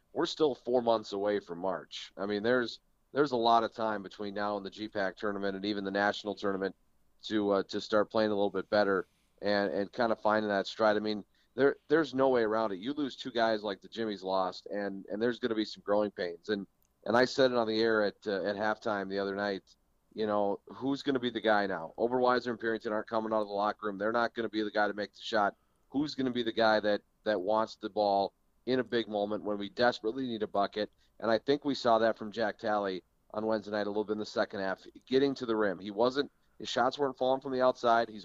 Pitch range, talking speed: 100-115 Hz, 260 wpm